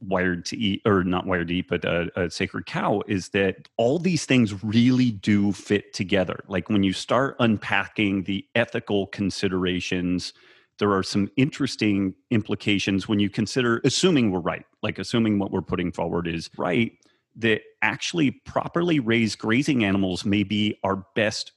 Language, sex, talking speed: English, male, 165 wpm